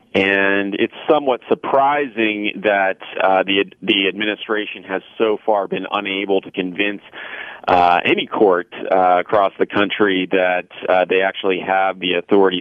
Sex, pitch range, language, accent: male, 95-105 Hz, English, American